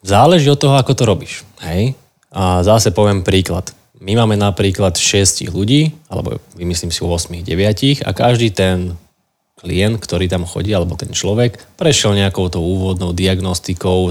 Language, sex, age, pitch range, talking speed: Slovak, male, 20-39, 95-105 Hz, 155 wpm